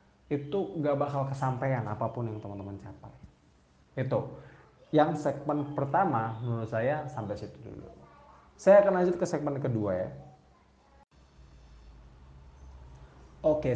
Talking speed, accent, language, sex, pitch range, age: 110 wpm, native, Indonesian, male, 115-155 Hz, 20-39